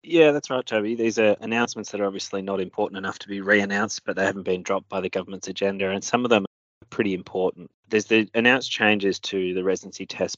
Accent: Australian